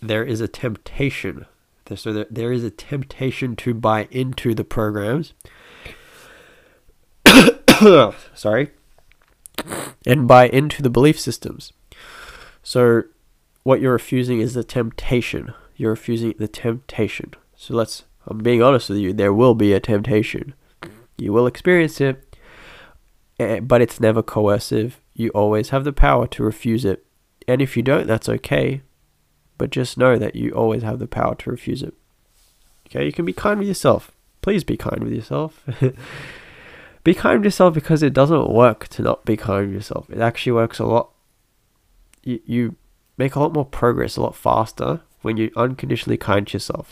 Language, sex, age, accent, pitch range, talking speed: English, male, 20-39, American, 110-135 Hz, 160 wpm